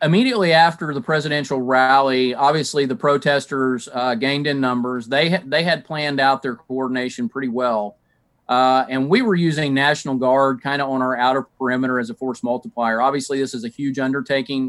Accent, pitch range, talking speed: American, 125-145 Hz, 180 wpm